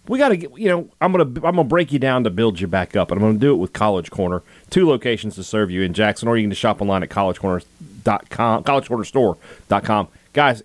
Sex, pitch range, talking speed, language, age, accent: male, 105-140 Hz, 235 wpm, English, 30-49, American